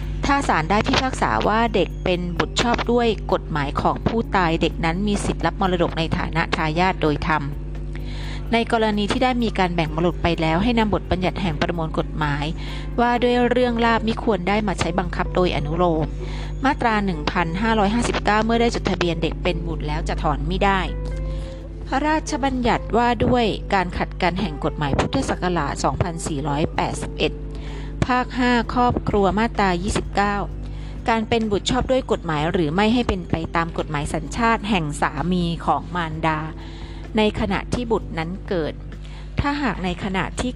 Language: Thai